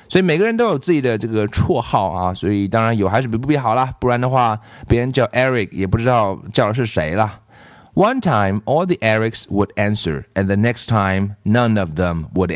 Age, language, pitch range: 30-49, Chinese, 95-130 Hz